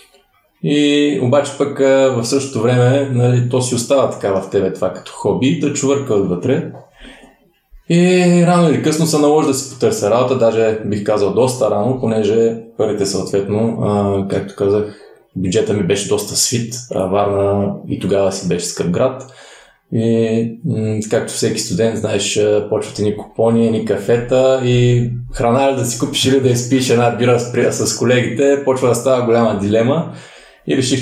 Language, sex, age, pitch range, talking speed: Bulgarian, male, 20-39, 105-135 Hz, 165 wpm